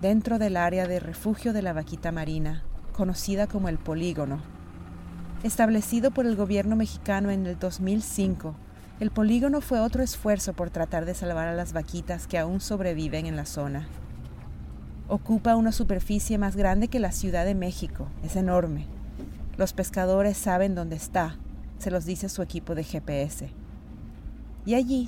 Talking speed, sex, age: 155 wpm, female, 40-59